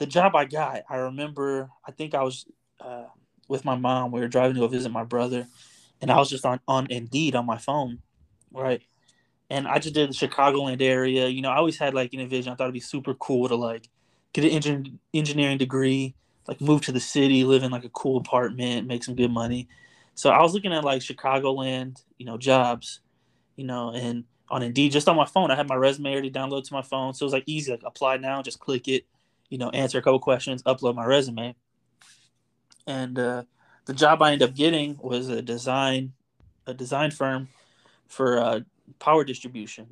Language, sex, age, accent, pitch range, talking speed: English, male, 20-39, American, 120-135 Hz, 215 wpm